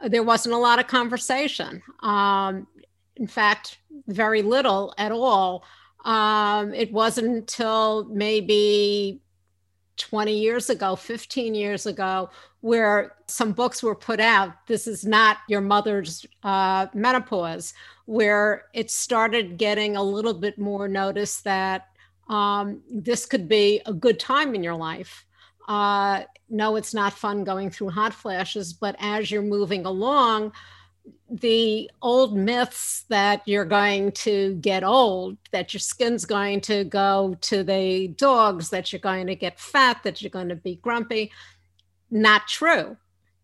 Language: English